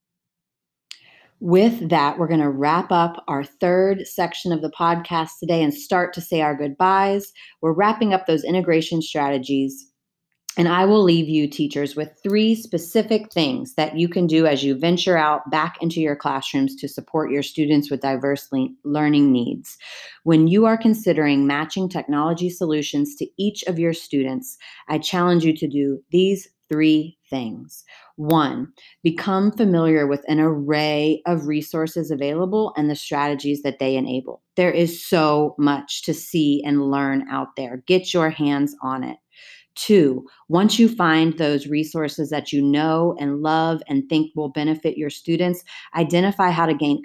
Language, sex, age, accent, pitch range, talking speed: English, female, 30-49, American, 145-175 Hz, 160 wpm